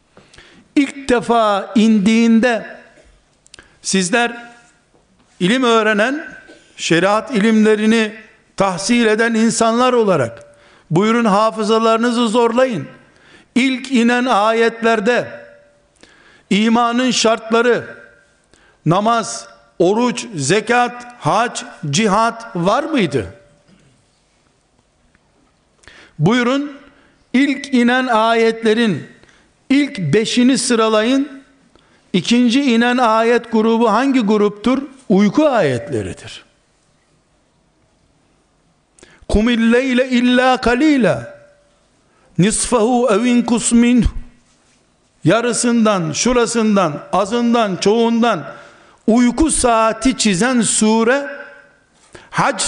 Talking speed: 65 wpm